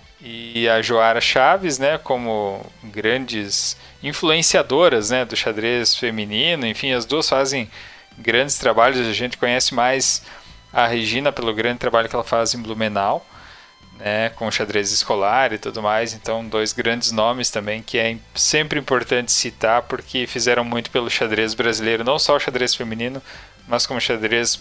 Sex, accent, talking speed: male, Brazilian, 155 wpm